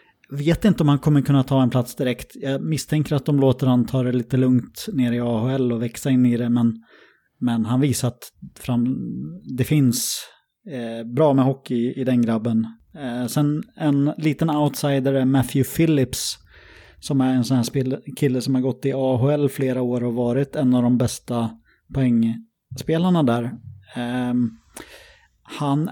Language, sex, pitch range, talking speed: English, male, 120-145 Hz, 160 wpm